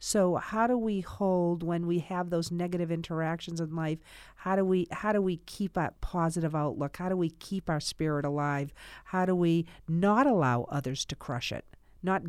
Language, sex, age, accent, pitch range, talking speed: English, female, 50-69, American, 150-185 Hz, 195 wpm